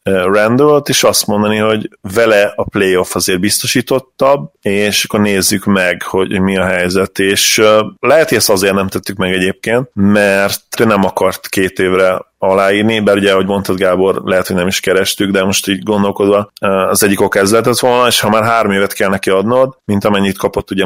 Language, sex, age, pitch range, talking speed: Hungarian, male, 30-49, 95-105 Hz, 185 wpm